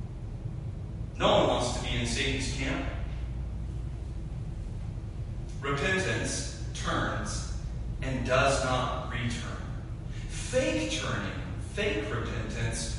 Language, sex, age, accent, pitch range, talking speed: English, male, 30-49, American, 110-135 Hz, 85 wpm